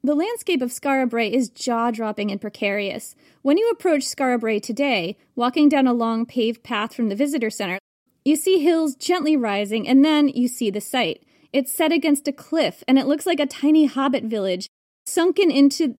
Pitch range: 240-305 Hz